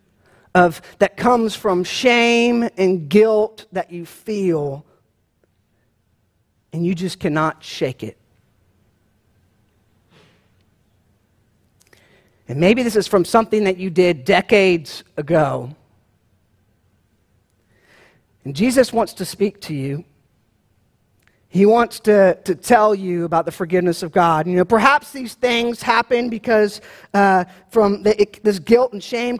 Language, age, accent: English, 40-59, American